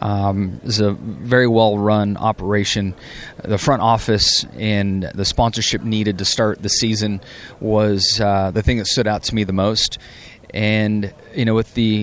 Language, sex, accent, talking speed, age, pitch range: English, male, American, 175 wpm, 30-49, 105-120 Hz